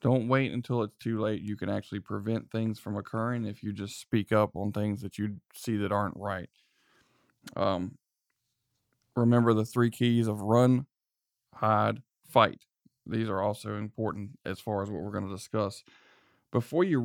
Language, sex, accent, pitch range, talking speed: English, male, American, 105-120 Hz, 175 wpm